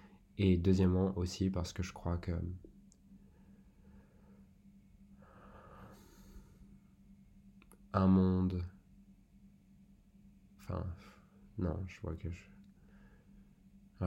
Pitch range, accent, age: 85-100 Hz, French, 20-39